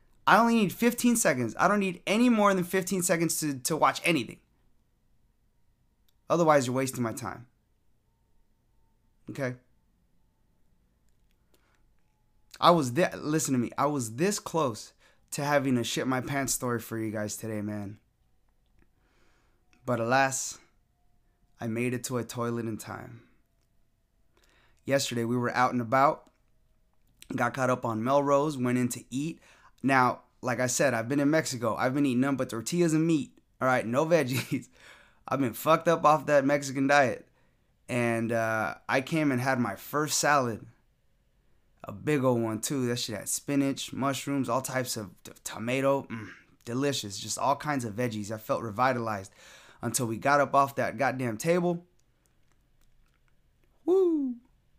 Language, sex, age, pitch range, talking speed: English, male, 20-39, 115-145 Hz, 155 wpm